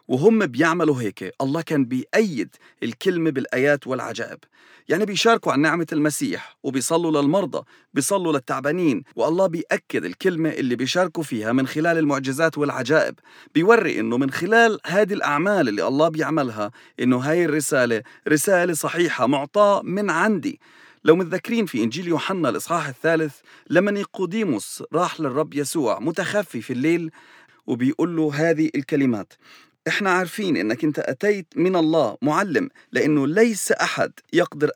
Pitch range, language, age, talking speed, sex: 145-185 Hz, English, 40-59, 130 wpm, male